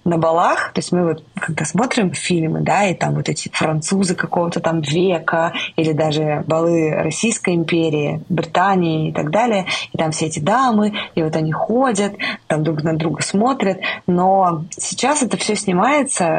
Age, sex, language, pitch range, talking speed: 20-39, female, Russian, 165-205 Hz, 170 wpm